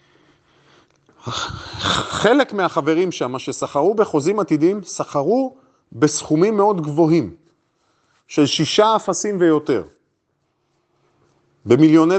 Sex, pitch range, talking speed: male, 150-205 Hz, 75 wpm